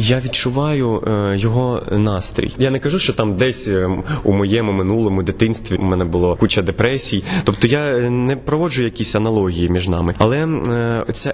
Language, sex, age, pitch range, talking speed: Ukrainian, male, 20-39, 100-135 Hz, 155 wpm